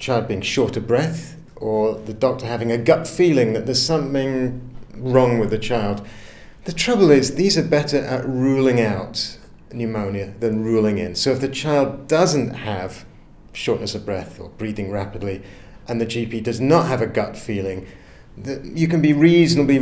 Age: 40-59